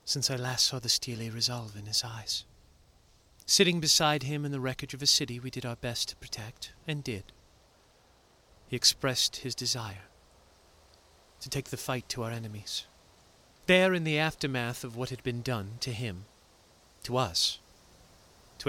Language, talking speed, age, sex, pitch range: English, 165 wpm, 40-59, male, 100-135 Hz